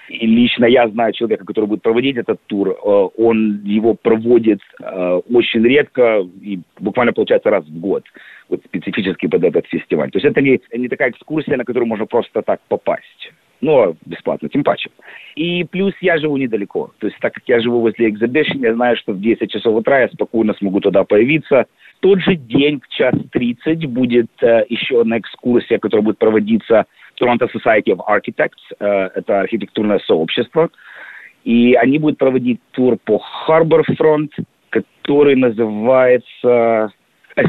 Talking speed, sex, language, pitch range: 160 wpm, male, Russian, 115-160 Hz